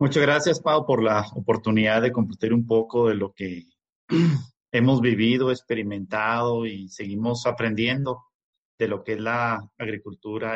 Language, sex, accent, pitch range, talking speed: Spanish, male, Mexican, 110-140 Hz, 140 wpm